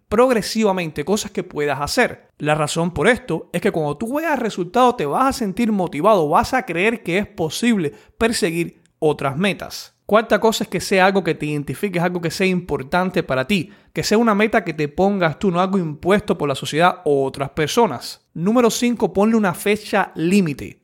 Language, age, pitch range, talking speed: Spanish, 30-49, 155-205 Hz, 195 wpm